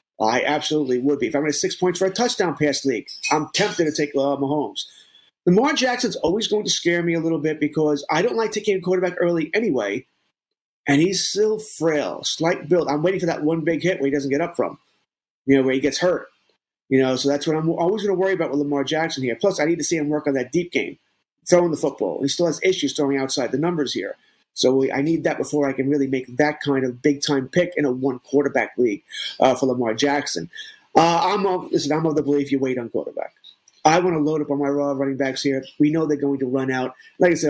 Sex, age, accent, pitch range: male, 30-49, American, 140-180 Hz